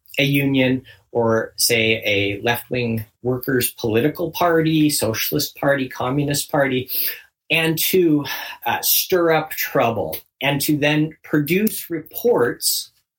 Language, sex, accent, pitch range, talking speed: English, male, American, 125-165 Hz, 110 wpm